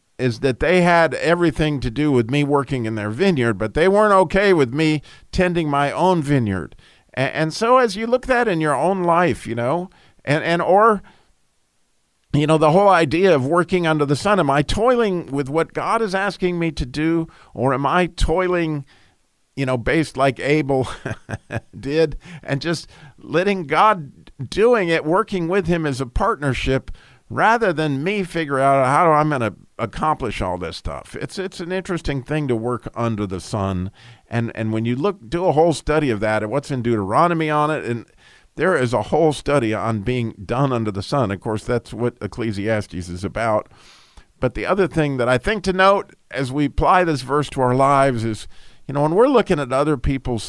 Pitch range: 120-170 Hz